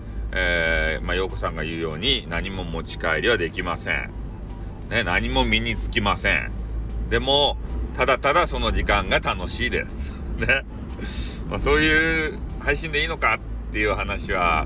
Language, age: Japanese, 40-59